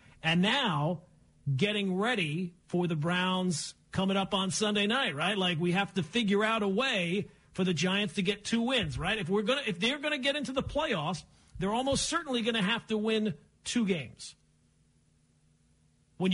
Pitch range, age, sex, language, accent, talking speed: 160-220 Hz, 40-59, male, English, American, 185 wpm